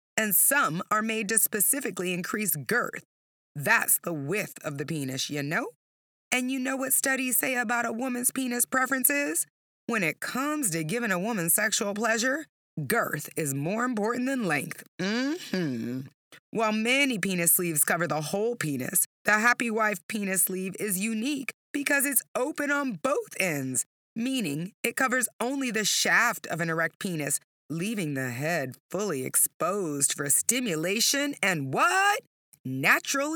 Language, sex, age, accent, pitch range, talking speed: English, female, 30-49, American, 175-260 Hz, 155 wpm